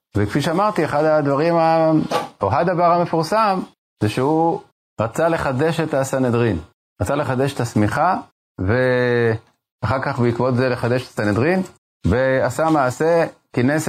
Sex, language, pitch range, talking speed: male, Hebrew, 115-145 Hz, 115 wpm